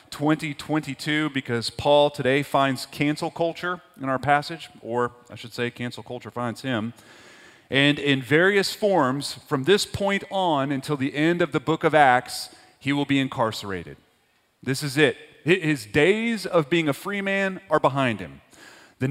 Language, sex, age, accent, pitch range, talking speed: English, male, 30-49, American, 110-150 Hz, 165 wpm